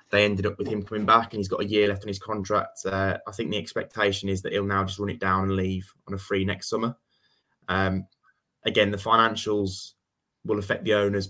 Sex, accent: male, British